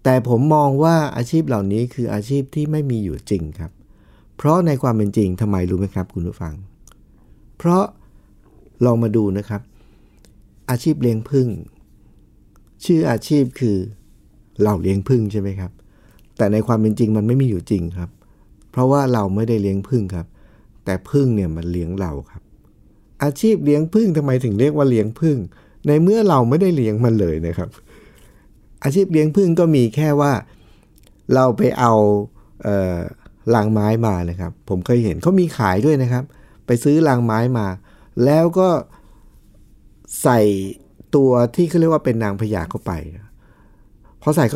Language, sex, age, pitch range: Thai, male, 60-79, 100-140 Hz